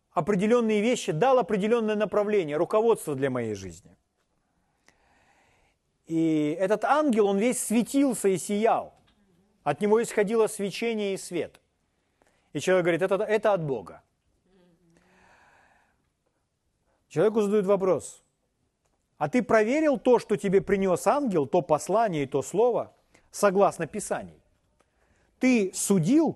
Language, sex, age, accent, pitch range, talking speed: Ukrainian, male, 40-59, native, 160-215 Hz, 115 wpm